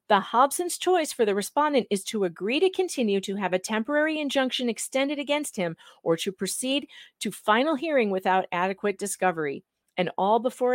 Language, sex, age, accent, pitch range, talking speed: English, female, 40-59, American, 195-280 Hz, 175 wpm